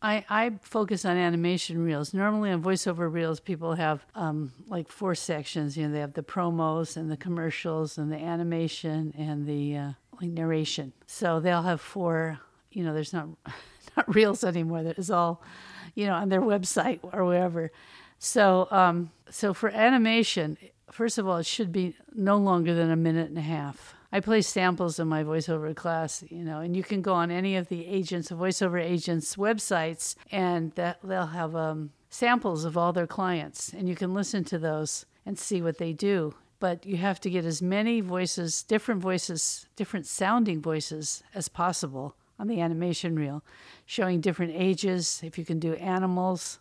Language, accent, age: English, American, 50-69